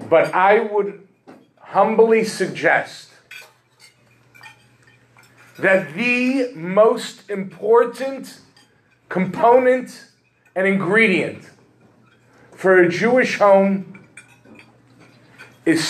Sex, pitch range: male, 140-210 Hz